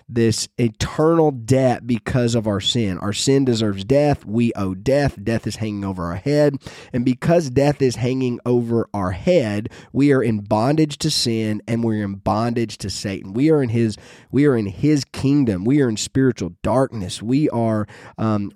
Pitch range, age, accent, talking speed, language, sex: 105-135 Hz, 30-49, American, 185 wpm, English, male